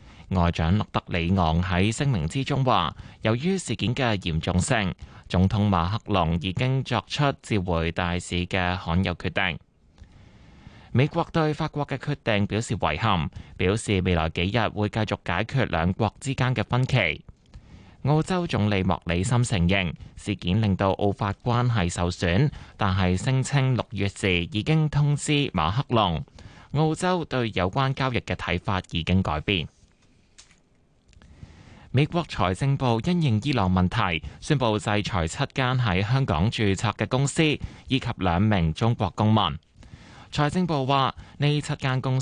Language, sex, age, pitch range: Chinese, male, 20-39, 90-130 Hz